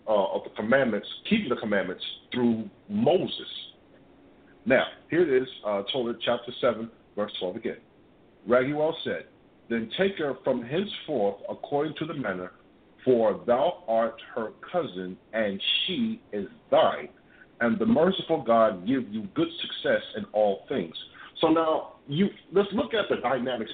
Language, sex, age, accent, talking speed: English, male, 50-69, American, 150 wpm